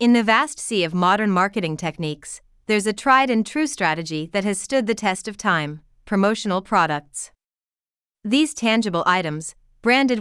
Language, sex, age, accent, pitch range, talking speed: English, female, 30-49, American, 170-235 Hz, 145 wpm